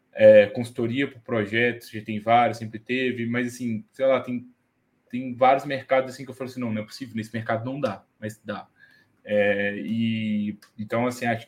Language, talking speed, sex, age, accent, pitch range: Portuguese, 195 wpm, male, 10-29, Brazilian, 120-140 Hz